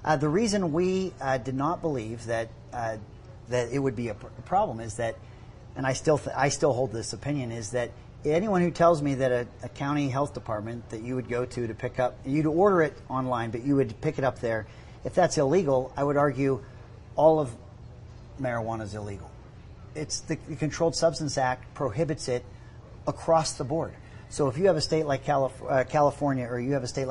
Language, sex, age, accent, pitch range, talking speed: English, male, 40-59, American, 115-140 Hz, 215 wpm